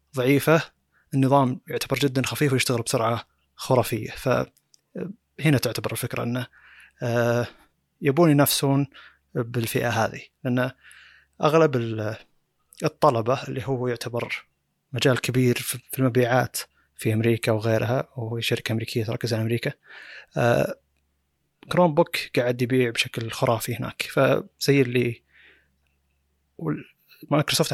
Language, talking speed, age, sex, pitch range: Arabic, 95 wpm, 20-39, male, 115-135 Hz